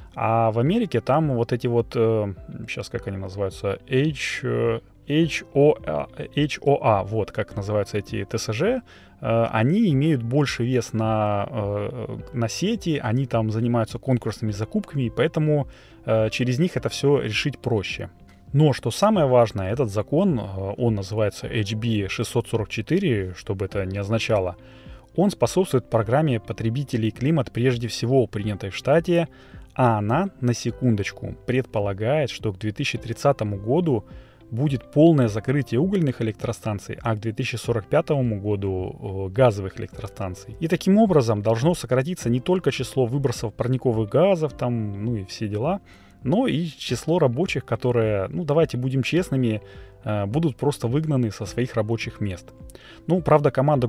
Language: Russian